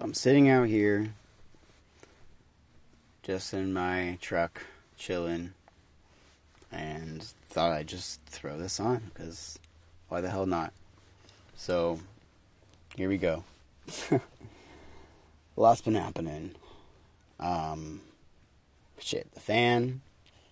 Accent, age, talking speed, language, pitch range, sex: American, 30-49, 95 wpm, English, 80-100 Hz, male